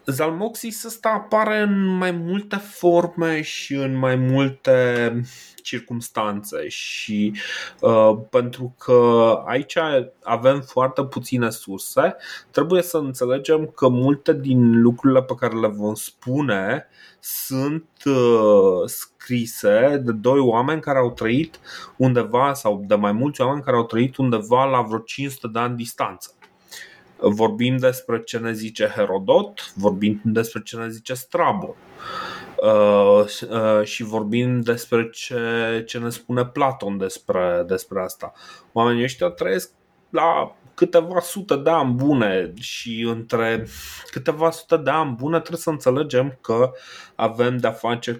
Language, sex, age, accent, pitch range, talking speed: Romanian, male, 20-39, native, 115-145 Hz, 125 wpm